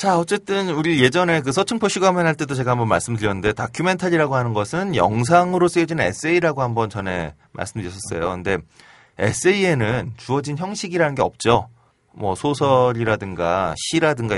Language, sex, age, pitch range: Korean, male, 30-49, 110-160 Hz